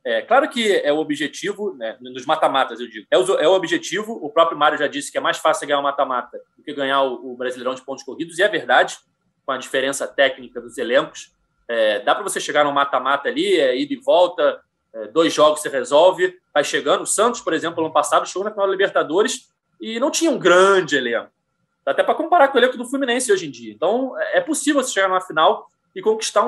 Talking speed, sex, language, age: 235 wpm, male, Portuguese, 20-39